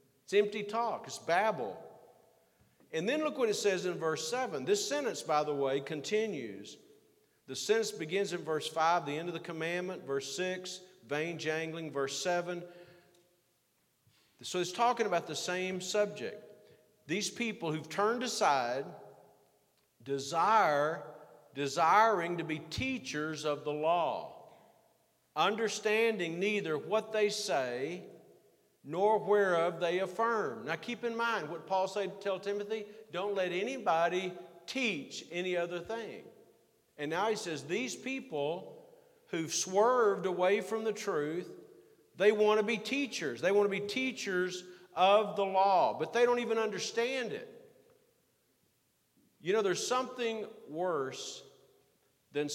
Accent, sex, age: American, male, 50-69